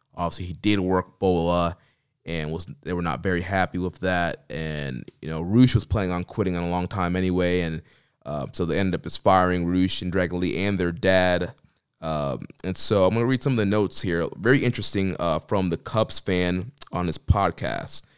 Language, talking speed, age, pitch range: English, 210 wpm, 20-39, 90-110 Hz